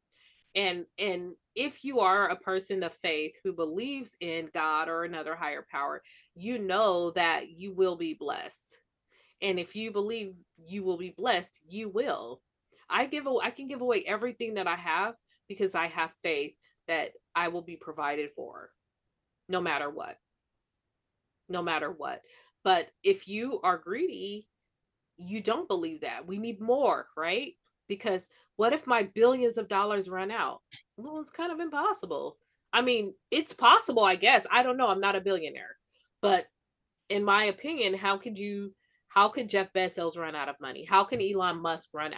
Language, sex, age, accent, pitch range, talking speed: English, female, 30-49, American, 170-230 Hz, 170 wpm